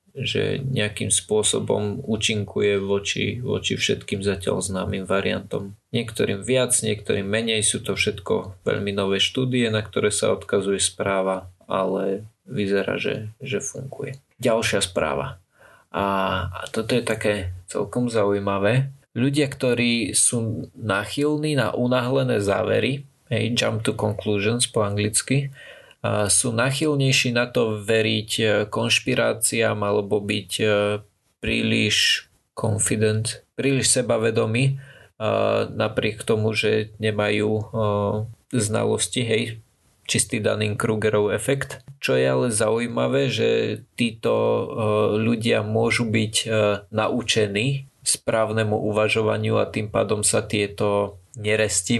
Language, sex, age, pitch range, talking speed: Slovak, male, 20-39, 105-120 Hz, 110 wpm